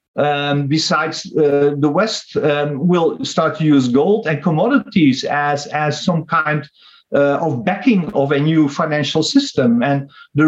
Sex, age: male, 50-69